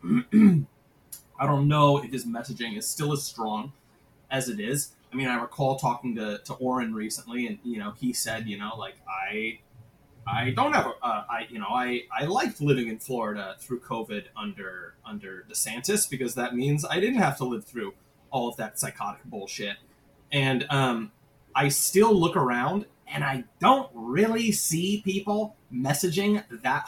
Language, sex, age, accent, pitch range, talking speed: English, male, 20-39, American, 130-190 Hz, 170 wpm